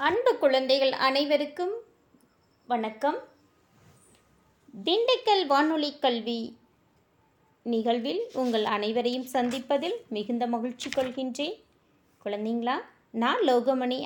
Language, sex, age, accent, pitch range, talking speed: English, female, 20-39, Indian, 220-300 Hz, 75 wpm